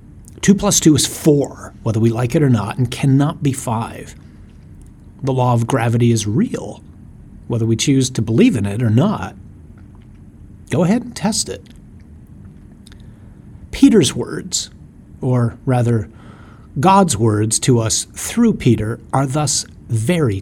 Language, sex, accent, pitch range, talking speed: English, male, American, 100-140 Hz, 140 wpm